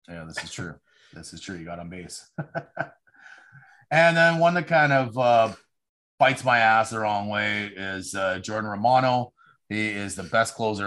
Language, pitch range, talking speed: English, 90-110 Hz, 180 wpm